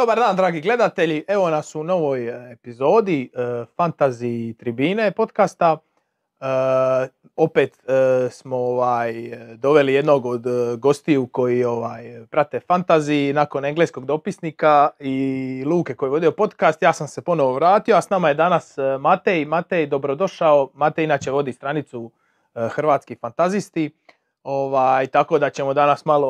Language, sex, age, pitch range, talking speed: Croatian, male, 30-49, 135-160 Hz, 135 wpm